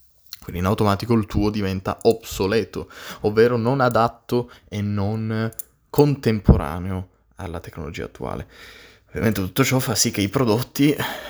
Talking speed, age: 125 wpm, 20-39